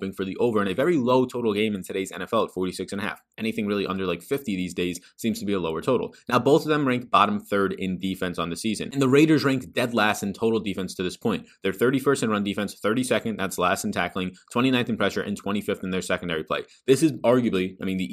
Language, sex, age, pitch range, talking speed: English, male, 20-39, 95-125 Hz, 260 wpm